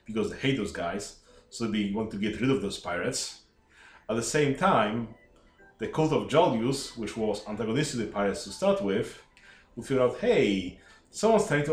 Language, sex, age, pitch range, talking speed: English, male, 30-49, 100-140 Hz, 195 wpm